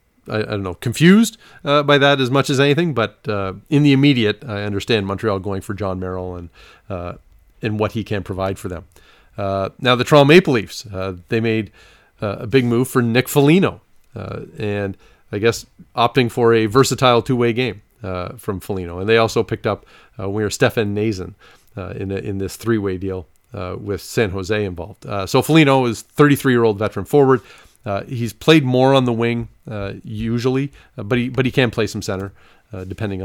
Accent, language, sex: American, English, male